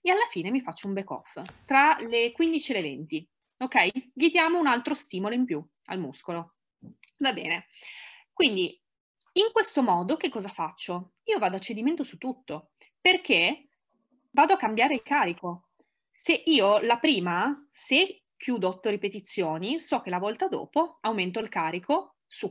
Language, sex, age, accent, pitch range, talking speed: Italian, female, 20-39, native, 175-280 Hz, 165 wpm